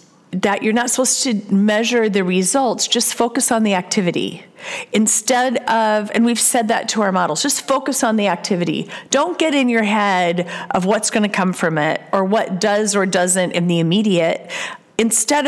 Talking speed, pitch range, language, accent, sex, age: 185 wpm, 190-240 Hz, English, American, female, 40-59